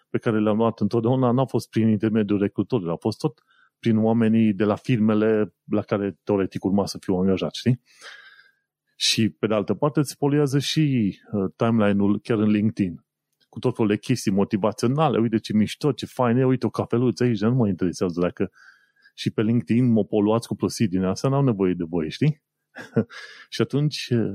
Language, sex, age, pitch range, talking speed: Romanian, male, 30-49, 100-125 Hz, 185 wpm